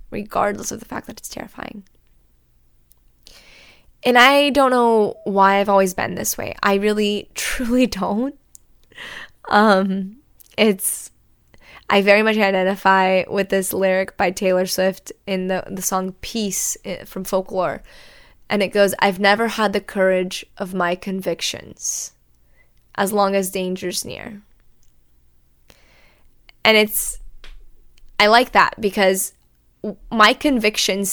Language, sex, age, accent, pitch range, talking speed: English, female, 10-29, American, 185-225 Hz, 125 wpm